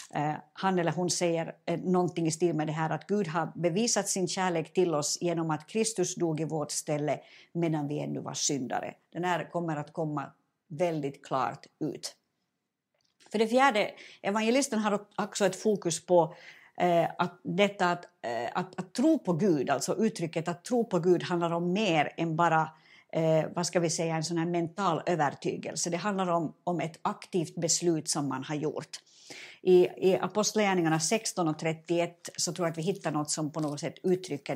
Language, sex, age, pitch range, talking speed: Swedish, female, 60-79, 160-185 Hz, 180 wpm